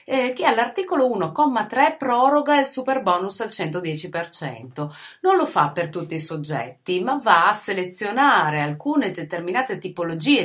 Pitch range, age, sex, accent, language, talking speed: 165-245 Hz, 30-49, female, native, Italian, 140 wpm